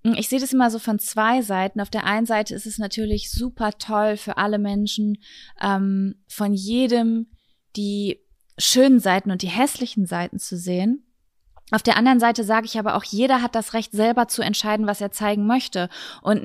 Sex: female